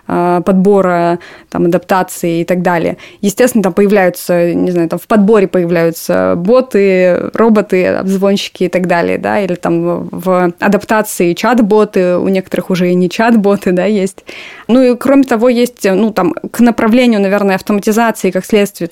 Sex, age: female, 20-39